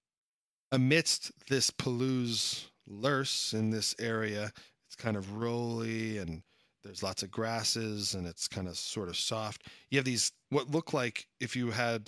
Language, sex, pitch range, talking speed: English, male, 105-145 Hz, 160 wpm